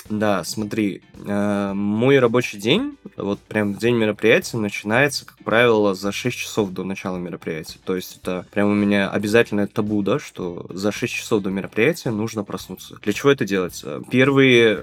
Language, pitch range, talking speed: Russian, 100-110 Hz, 165 wpm